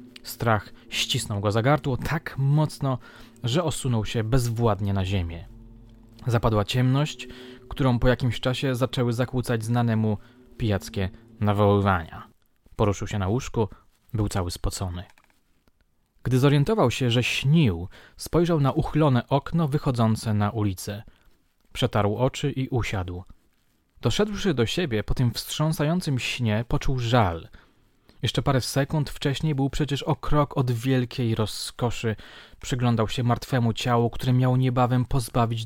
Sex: male